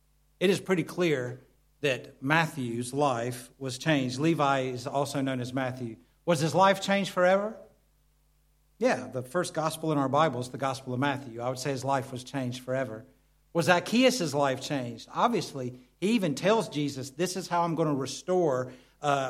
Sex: male